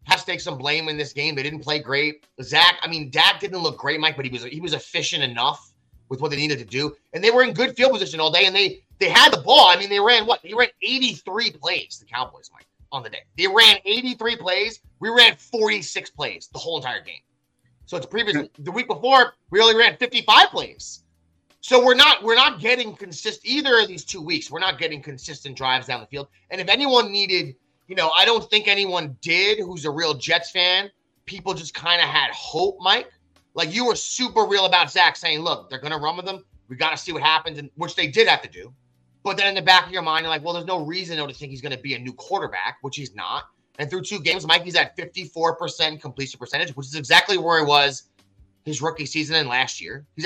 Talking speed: 245 wpm